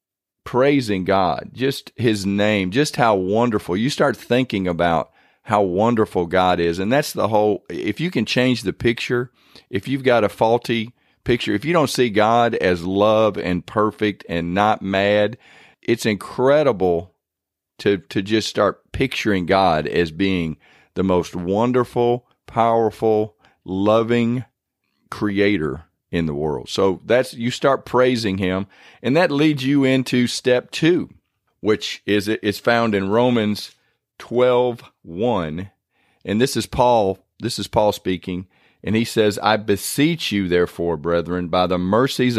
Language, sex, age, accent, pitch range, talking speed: English, male, 40-59, American, 95-120 Hz, 145 wpm